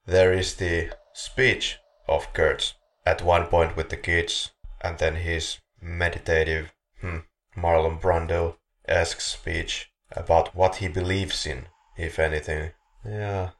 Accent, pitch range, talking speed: Finnish, 85-95 Hz, 130 wpm